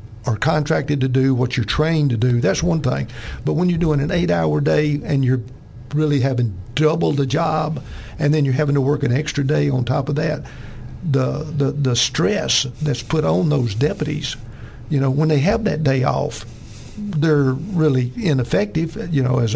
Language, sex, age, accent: English, male, 60-79, American